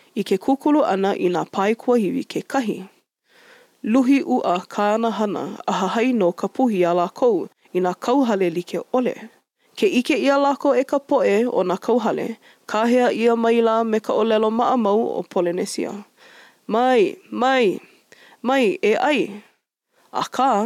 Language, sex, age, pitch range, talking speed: English, female, 20-39, 200-265 Hz, 135 wpm